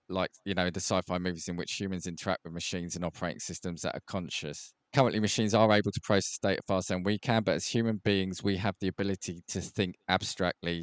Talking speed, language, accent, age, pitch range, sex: 220 wpm, English, British, 20-39, 85-100 Hz, male